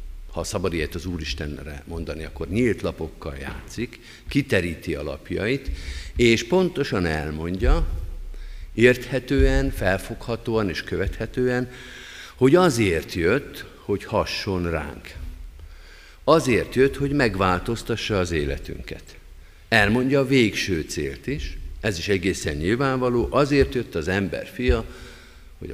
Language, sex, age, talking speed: Hungarian, male, 50-69, 105 wpm